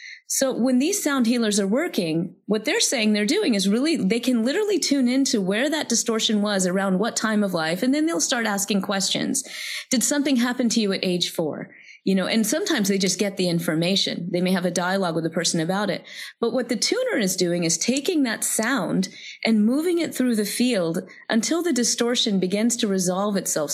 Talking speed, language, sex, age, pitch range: 210 wpm, English, female, 30-49, 185-245 Hz